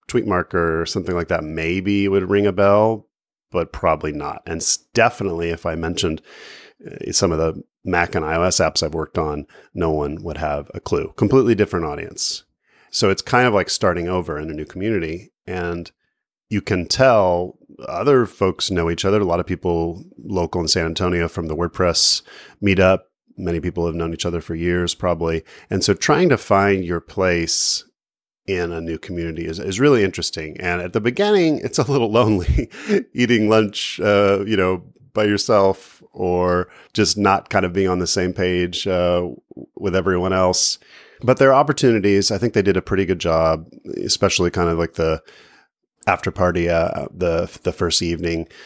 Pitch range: 85-100 Hz